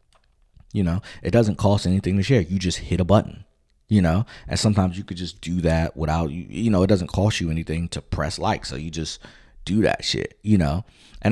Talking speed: 225 wpm